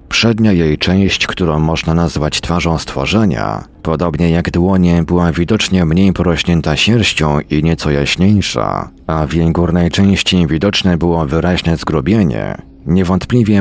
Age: 40-59